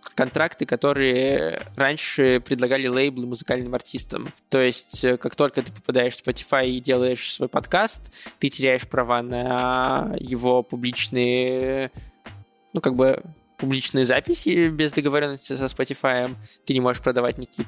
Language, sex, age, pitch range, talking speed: Russian, male, 20-39, 125-135 Hz, 130 wpm